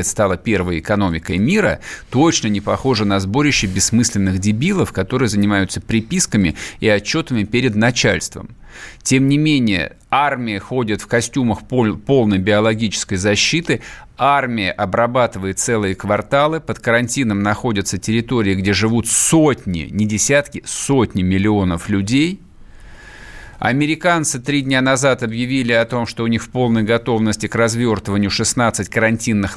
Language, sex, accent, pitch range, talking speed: Russian, male, native, 100-130 Hz, 125 wpm